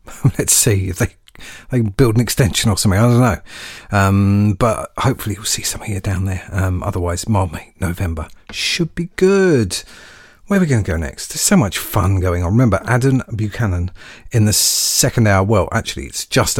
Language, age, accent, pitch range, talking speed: English, 40-59, British, 90-125 Hz, 190 wpm